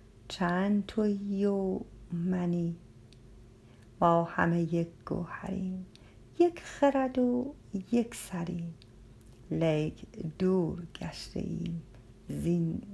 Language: Persian